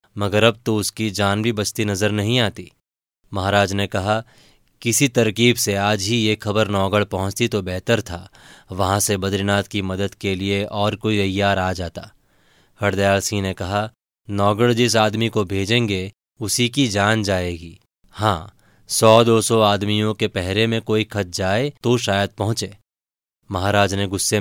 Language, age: Hindi, 20-39